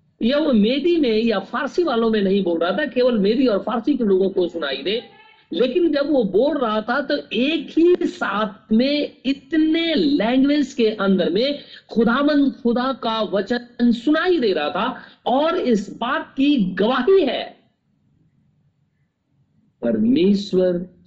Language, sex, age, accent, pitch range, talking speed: Hindi, male, 50-69, native, 210-285 Hz, 150 wpm